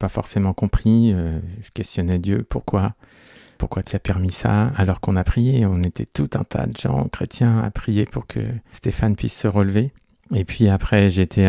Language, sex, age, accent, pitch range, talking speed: French, male, 40-59, French, 95-115 Hz, 195 wpm